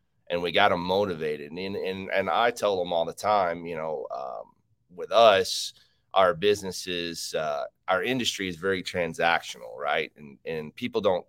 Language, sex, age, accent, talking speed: English, male, 30-49, American, 170 wpm